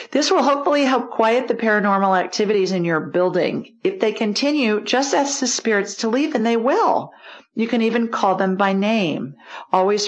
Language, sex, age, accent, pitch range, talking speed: English, female, 50-69, American, 180-230 Hz, 185 wpm